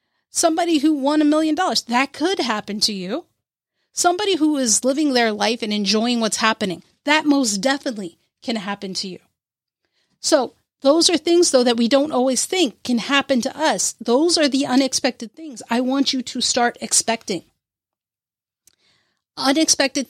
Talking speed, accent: 160 wpm, American